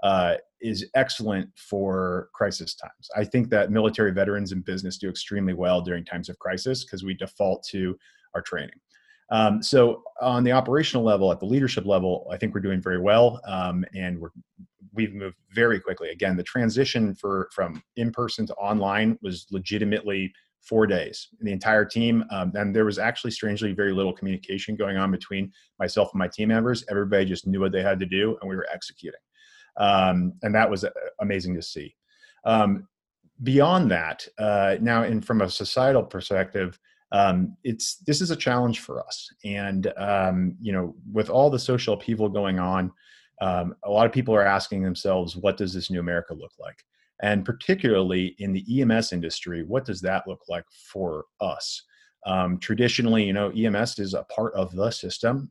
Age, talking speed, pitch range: 30-49, 180 wpm, 95-115 Hz